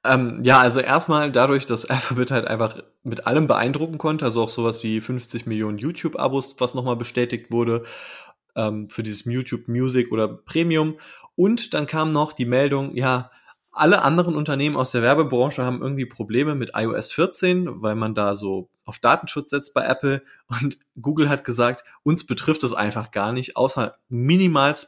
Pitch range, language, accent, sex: 110-140 Hz, German, German, male